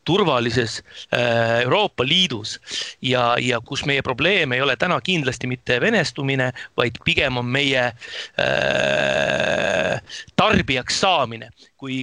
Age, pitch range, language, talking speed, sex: 30-49, 125-155 Hz, English, 105 wpm, male